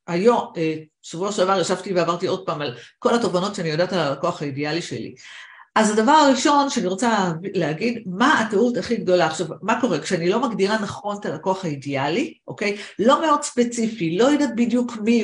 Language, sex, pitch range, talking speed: Hebrew, female, 175-245 Hz, 175 wpm